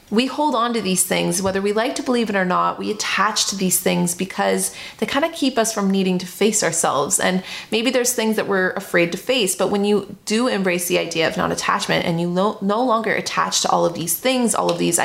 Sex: female